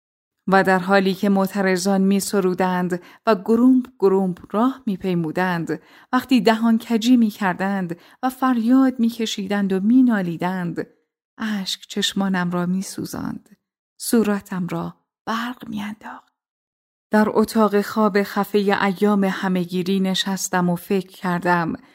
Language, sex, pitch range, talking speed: Persian, female, 185-225 Hz, 105 wpm